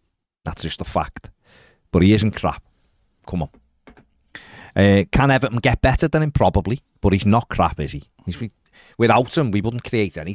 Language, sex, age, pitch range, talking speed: English, male, 40-59, 85-110 Hz, 185 wpm